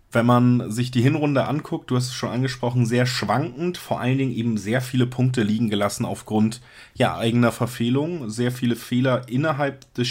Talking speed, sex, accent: 180 wpm, male, German